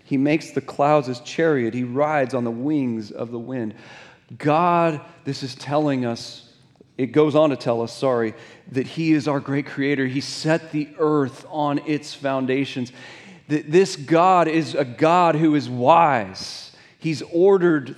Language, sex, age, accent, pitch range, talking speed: English, male, 40-59, American, 140-175 Hz, 165 wpm